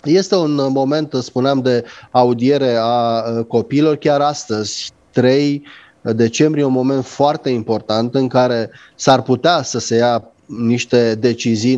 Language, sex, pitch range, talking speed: Romanian, male, 120-145 Hz, 125 wpm